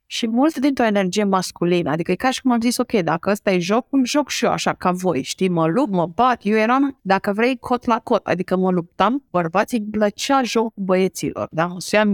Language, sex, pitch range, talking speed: Romanian, female, 185-245 Hz, 230 wpm